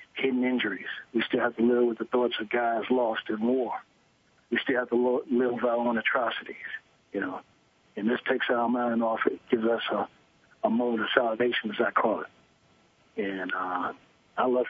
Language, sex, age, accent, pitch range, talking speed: English, male, 50-69, American, 120-140 Hz, 200 wpm